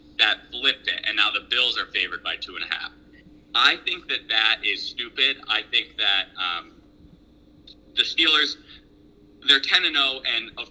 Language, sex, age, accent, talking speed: English, male, 30-49, American, 175 wpm